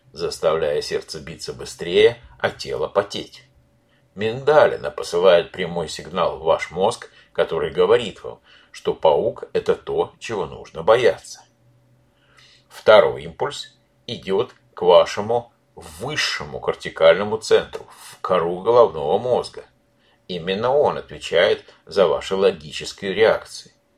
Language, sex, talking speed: Russian, male, 110 wpm